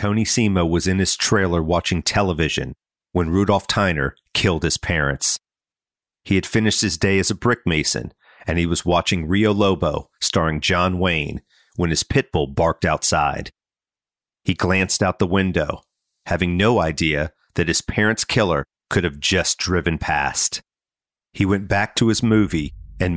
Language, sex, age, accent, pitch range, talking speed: English, male, 40-59, American, 85-105 Hz, 160 wpm